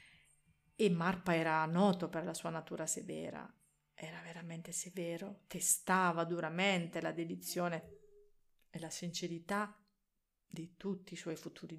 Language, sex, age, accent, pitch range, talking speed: Italian, female, 40-59, native, 160-200 Hz, 120 wpm